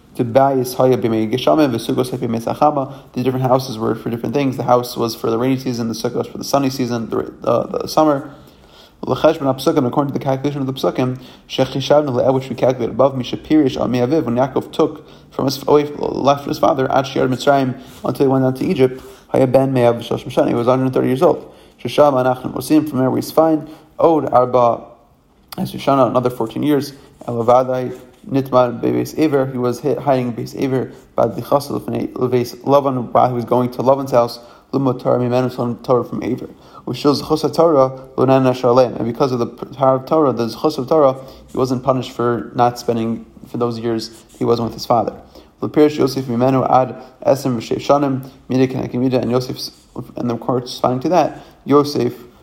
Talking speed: 125 wpm